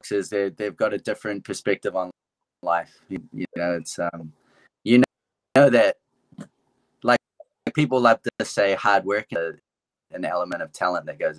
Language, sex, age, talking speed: English, male, 20-39, 190 wpm